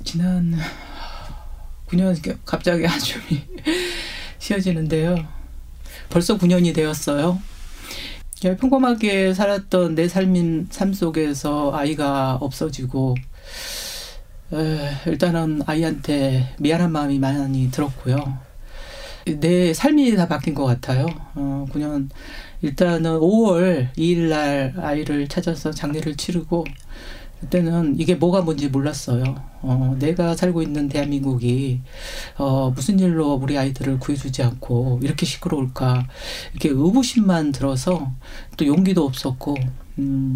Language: Korean